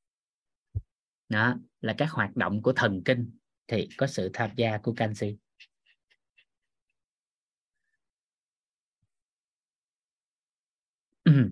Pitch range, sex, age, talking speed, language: 105-155 Hz, male, 20-39, 85 wpm, Vietnamese